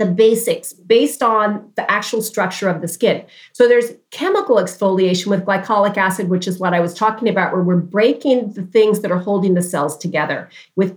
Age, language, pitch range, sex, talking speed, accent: 40-59, English, 185-235 Hz, female, 195 wpm, American